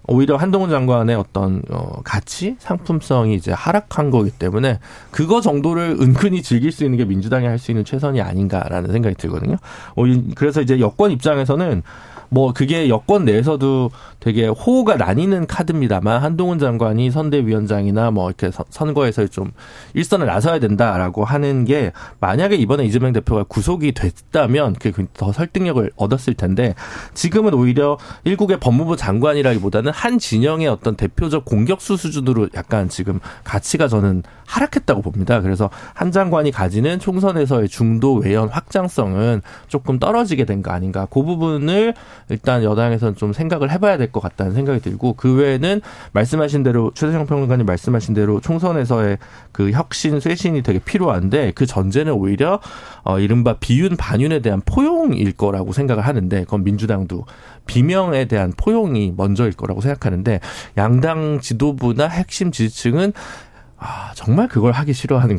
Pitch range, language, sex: 105-155 Hz, Korean, male